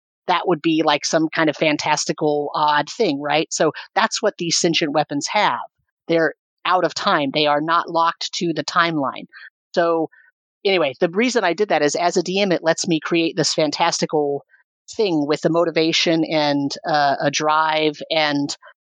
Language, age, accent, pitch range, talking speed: English, 40-59, American, 150-175 Hz, 175 wpm